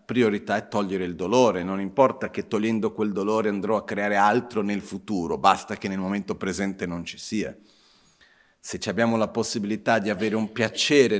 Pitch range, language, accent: 95-115 Hz, Italian, native